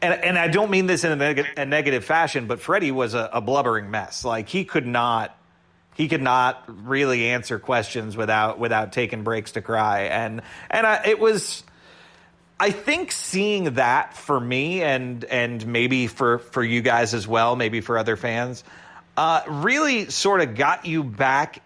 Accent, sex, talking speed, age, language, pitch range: American, male, 185 wpm, 30-49, English, 115-145 Hz